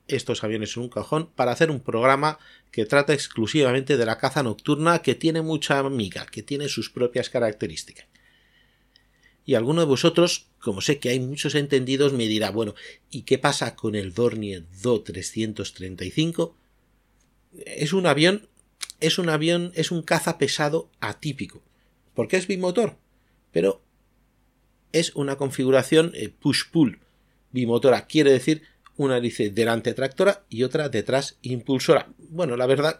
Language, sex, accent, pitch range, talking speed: Spanish, male, Spanish, 110-150 Hz, 145 wpm